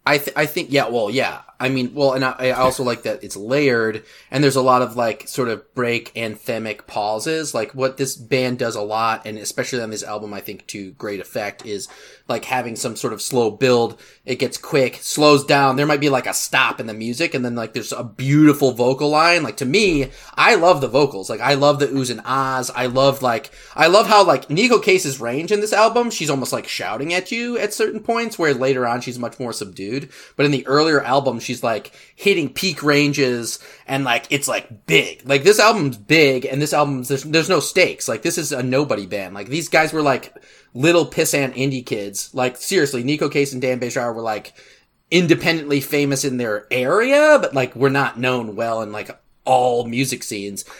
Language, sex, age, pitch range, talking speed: English, male, 20-39, 120-145 Hz, 220 wpm